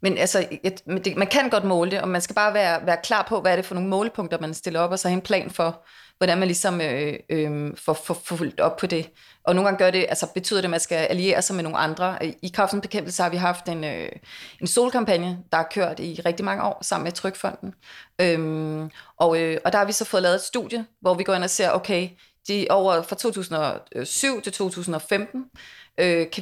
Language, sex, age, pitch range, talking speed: Danish, female, 30-49, 175-205 Hz, 235 wpm